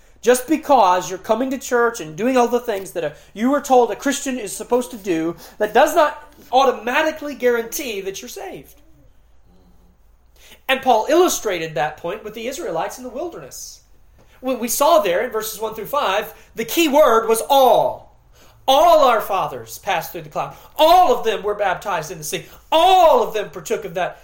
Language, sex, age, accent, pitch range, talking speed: English, male, 30-49, American, 160-245 Hz, 185 wpm